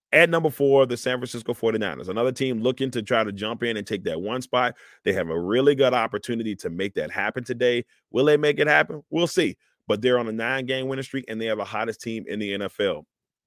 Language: English